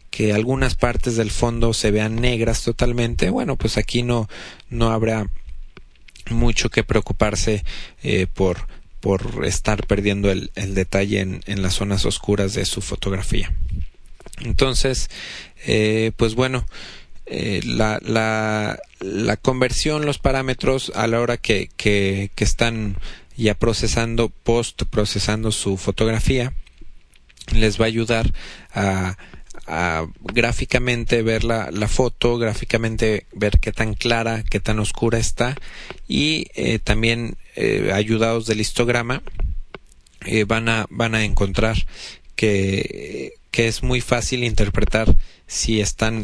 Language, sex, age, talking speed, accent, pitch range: Spanish, male, 30-49, 130 wpm, Mexican, 100-115 Hz